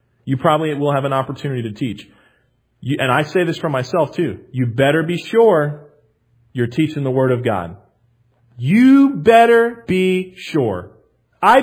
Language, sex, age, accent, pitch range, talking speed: English, male, 40-59, American, 125-195 Hz, 155 wpm